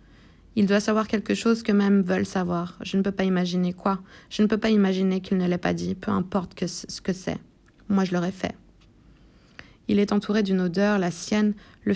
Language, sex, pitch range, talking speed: French, female, 185-205 Hz, 220 wpm